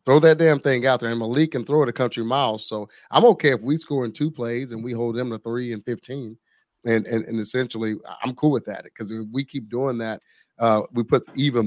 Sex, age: male, 30-49